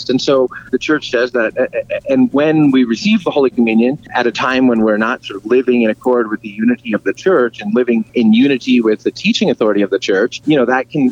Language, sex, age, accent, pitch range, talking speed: English, male, 30-49, American, 110-140 Hz, 245 wpm